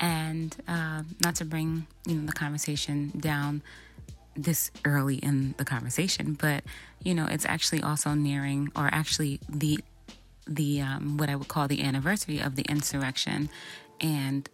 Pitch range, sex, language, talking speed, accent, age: 145-175 Hz, female, English, 155 wpm, American, 20-39